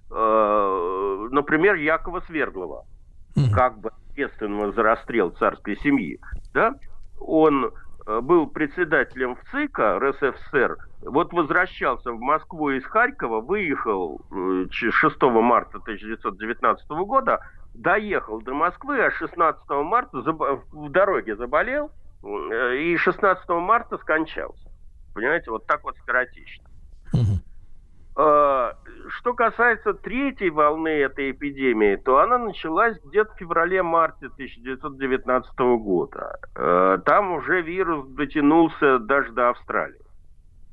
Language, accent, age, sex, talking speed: Russian, native, 50-69, male, 95 wpm